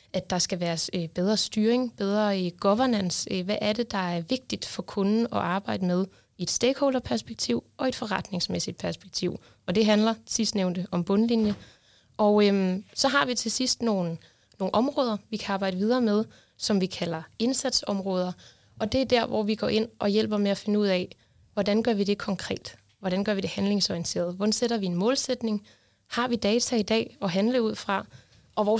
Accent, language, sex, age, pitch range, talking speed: native, Danish, female, 20-39, 185-225 Hz, 195 wpm